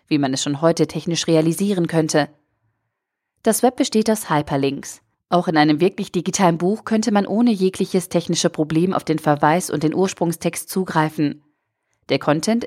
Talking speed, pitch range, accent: 160 wpm, 155-195 Hz, German